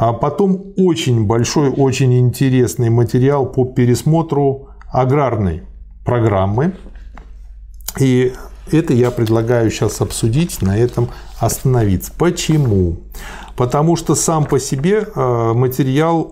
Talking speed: 100 wpm